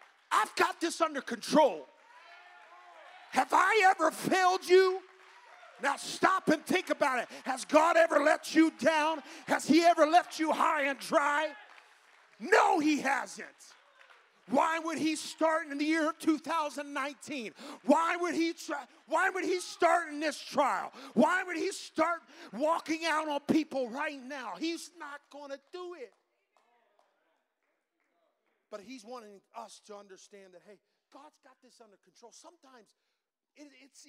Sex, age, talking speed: male, 40-59, 150 wpm